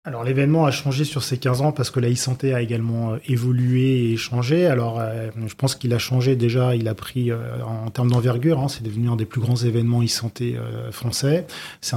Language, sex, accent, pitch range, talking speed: French, male, French, 115-130 Hz, 215 wpm